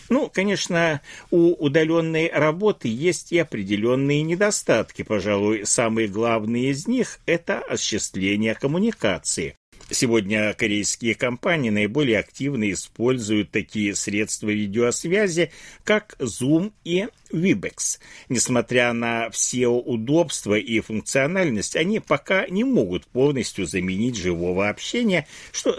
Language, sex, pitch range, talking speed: Russian, male, 110-165 Hz, 105 wpm